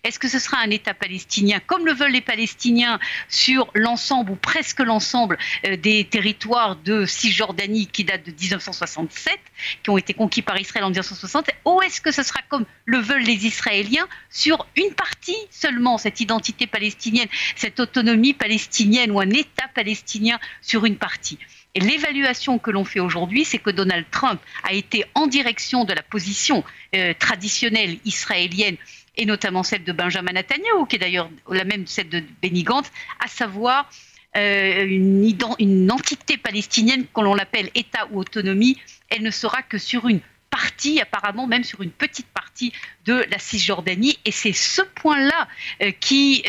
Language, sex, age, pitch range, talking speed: Russian, female, 50-69, 200-260 Hz, 165 wpm